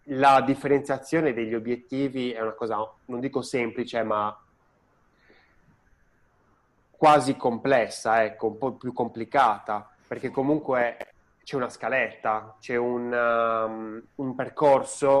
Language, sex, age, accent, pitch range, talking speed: Italian, male, 20-39, native, 110-135 Hz, 110 wpm